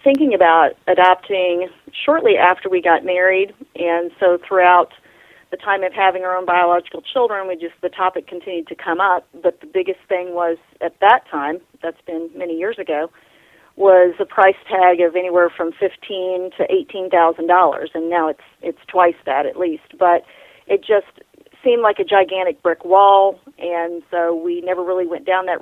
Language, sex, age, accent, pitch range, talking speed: English, female, 40-59, American, 175-200 Hz, 180 wpm